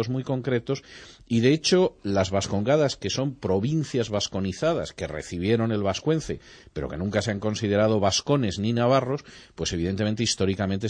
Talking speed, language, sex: 150 wpm, Spanish, male